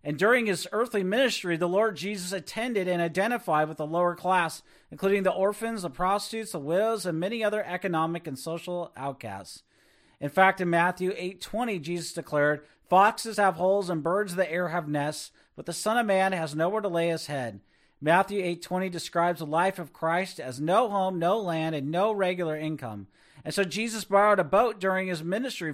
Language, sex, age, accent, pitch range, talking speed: English, male, 40-59, American, 160-200 Hz, 190 wpm